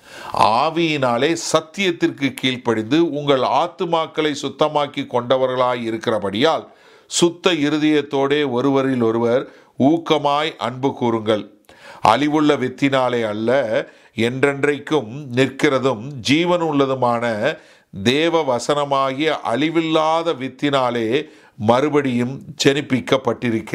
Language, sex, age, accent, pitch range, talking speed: English, male, 50-69, Indian, 115-145 Hz, 75 wpm